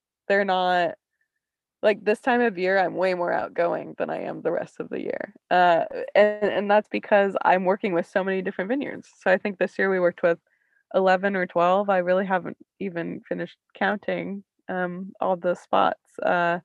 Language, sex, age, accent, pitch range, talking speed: English, female, 20-39, American, 175-215 Hz, 185 wpm